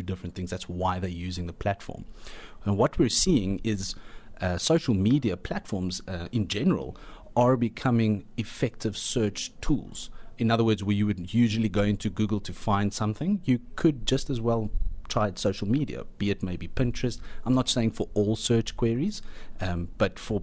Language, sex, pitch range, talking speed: English, male, 90-115 Hz, 175 wpm